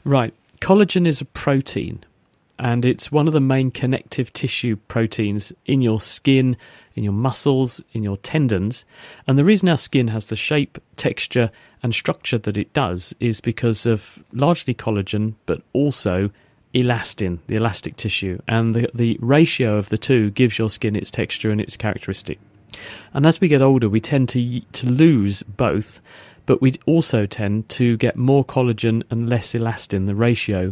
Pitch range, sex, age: 105-130 Hz, male, 40-59